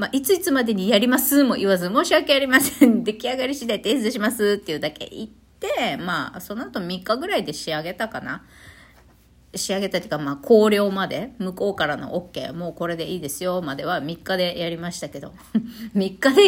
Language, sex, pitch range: Japanese, female, 160-225 Hz